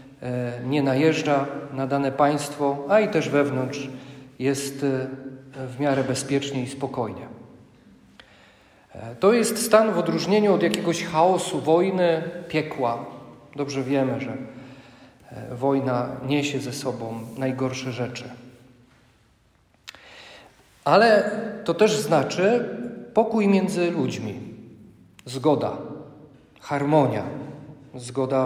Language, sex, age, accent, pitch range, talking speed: Polish, male, 40-59, native, 130-170 Hz, 95 wpm